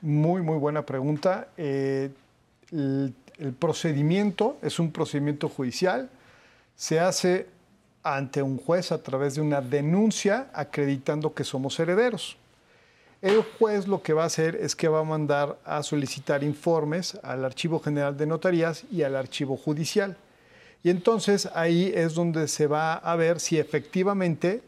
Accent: Mexican